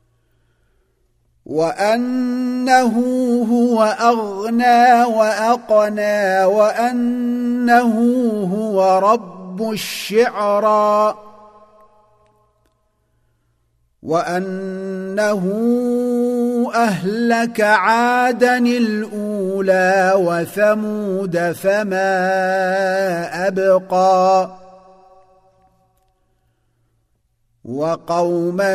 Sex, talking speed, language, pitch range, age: male, 35 wpm, Arabic, 160-210 Hz, 40-59